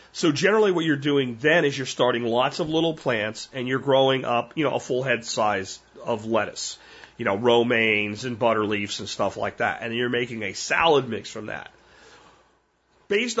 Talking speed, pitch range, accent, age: 195 wpm, 120-160 Hz, American, 40-59